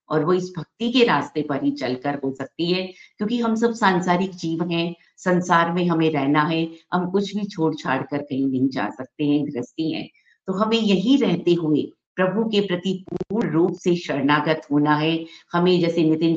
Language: Hindi